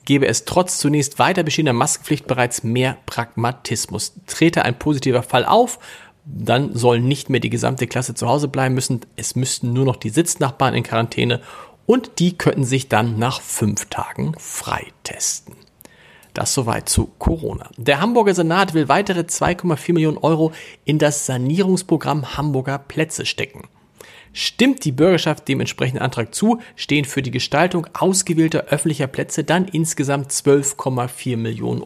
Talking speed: 150 wpm